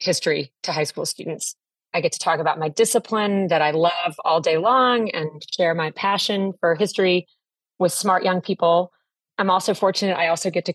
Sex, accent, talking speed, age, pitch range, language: female, American, 195 wpm, 30-49, 170-205 Hz, English